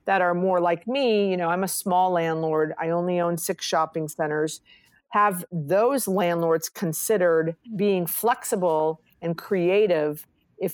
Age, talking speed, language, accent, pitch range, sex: 50-69, 145 wpm, English, American, 165-205 Hz, female